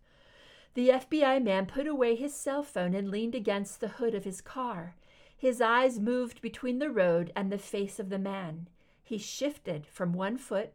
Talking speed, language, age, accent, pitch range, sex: 185 wpm, English, 50-69, American, 180-245 Hz, female